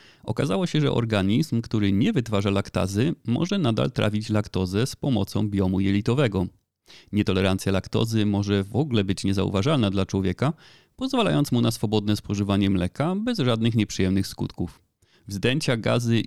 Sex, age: male, 30-49